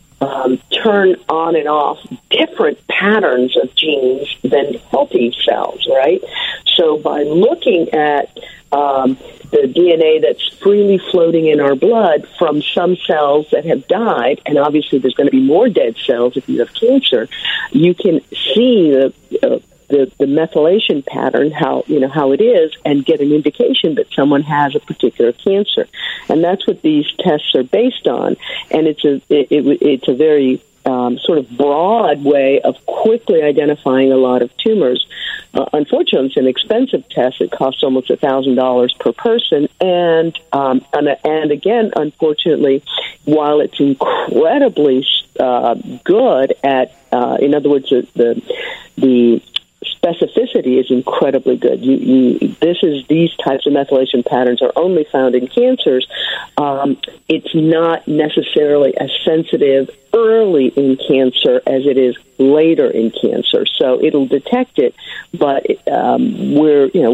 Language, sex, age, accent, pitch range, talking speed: English, female, 50-69, American, 135-175 Hz, 155 wpm